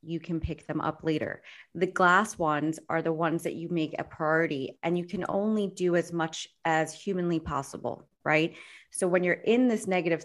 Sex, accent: female, American